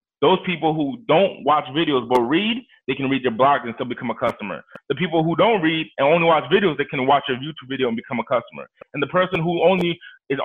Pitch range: 145-195 Hz